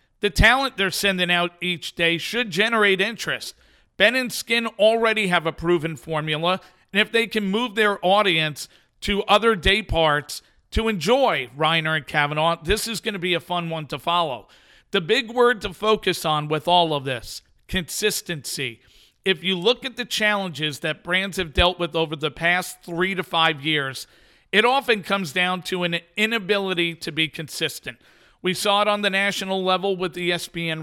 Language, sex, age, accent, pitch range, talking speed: English, male, 50-69, American, 165-205 Hz, 180 wpm